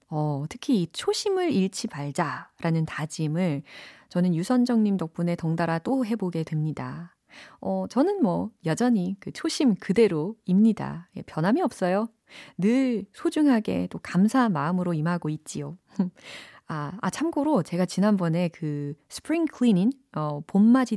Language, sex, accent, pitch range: Korean, female, native, 155-220 Hz